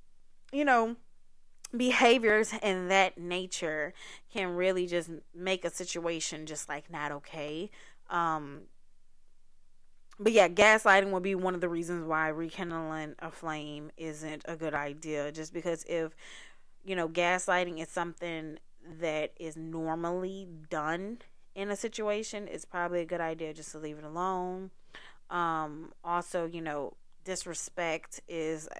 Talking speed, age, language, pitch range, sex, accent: 135 wpm, 20-39, English, 160-190 Hz, female, American